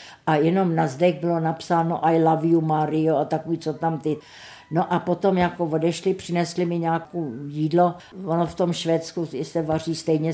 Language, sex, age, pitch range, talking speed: Czech, female, 60-79, 165-195 Hz, 180 wpm